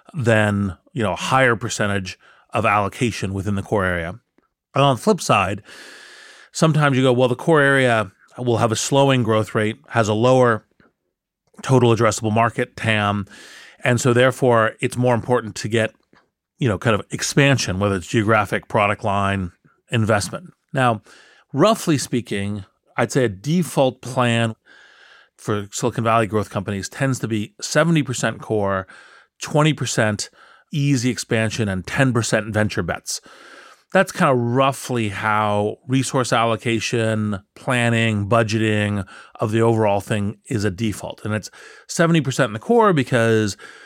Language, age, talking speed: English, 40-59, 145 wpm